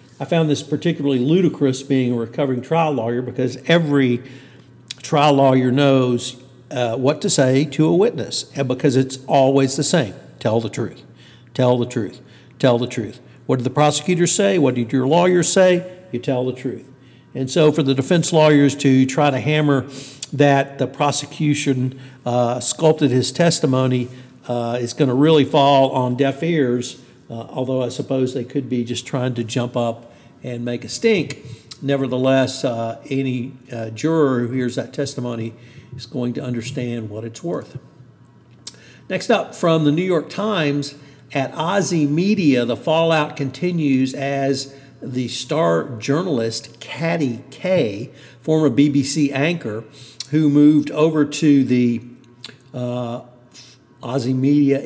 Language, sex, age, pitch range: English, male, 60-79, 125-145 Hz